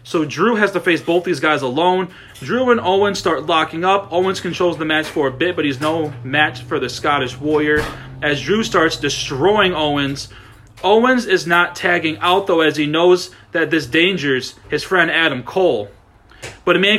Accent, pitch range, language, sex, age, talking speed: American, 150-195 Hz, English, male, 30-49, 190 wpm